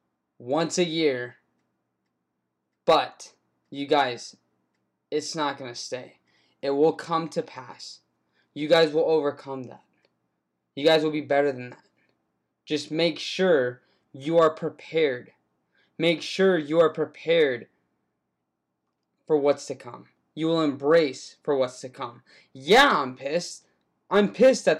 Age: 20-39